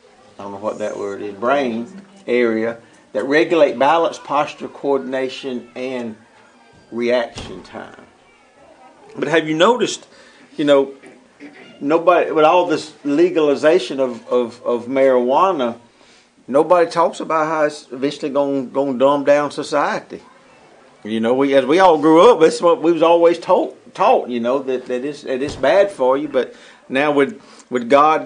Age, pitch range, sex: 50-69, 125-150 Hz, male